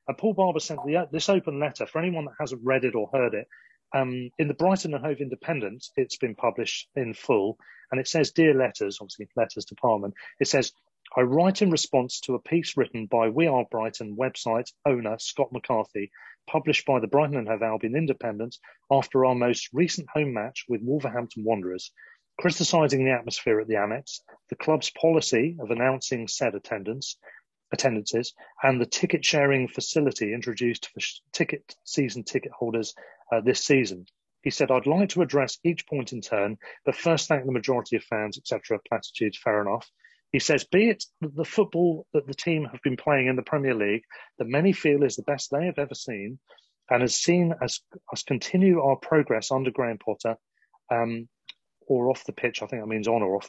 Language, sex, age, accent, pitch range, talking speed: English, male, 40-59, British, 120-160 Hz, 195 wpm